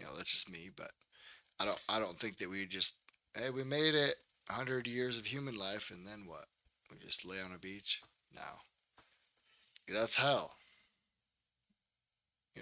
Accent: American